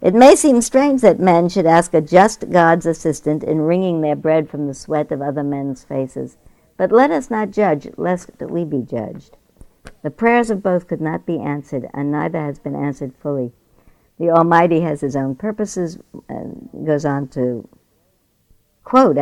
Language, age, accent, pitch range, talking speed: English, 60-79, American, 135-175 Hz, 180 wpm